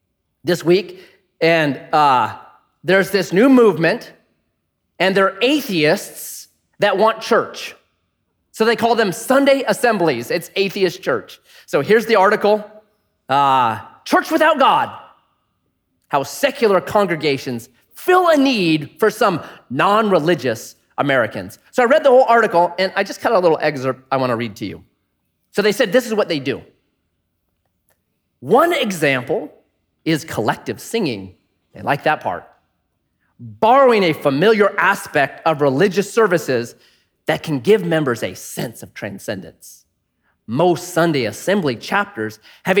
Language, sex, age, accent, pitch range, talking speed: English, male, 30-49, American, 160-245 Hz, 135 wpm